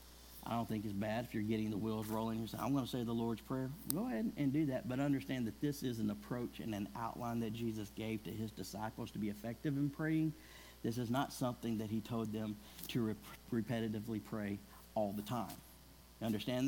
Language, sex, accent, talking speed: English, male, American, 220 wpm